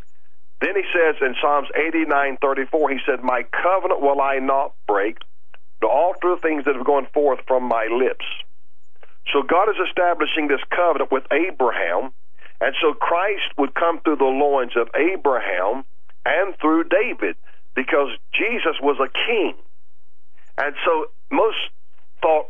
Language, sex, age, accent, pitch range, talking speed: English, male, 50-69, American, 135-175 Hz, 155 wpm